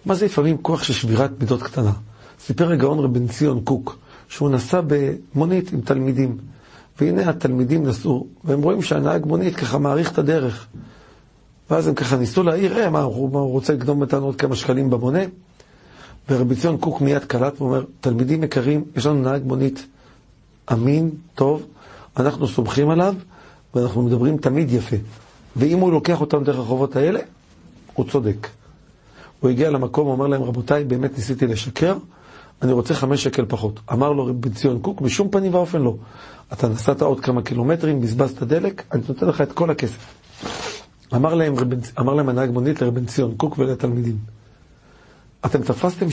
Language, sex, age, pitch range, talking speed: Hebrew, male, 50-69, 125-150 Hz, 155 wpm